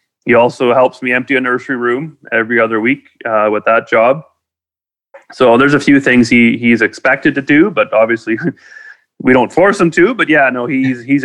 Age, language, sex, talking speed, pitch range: 30-49, English, male, 195 wpm, 115-140 Hz